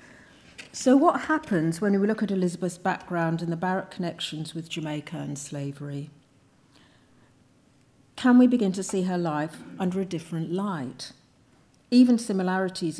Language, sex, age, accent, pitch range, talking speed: English, female, 50-69, British, 155-190 Hz, 140 wpm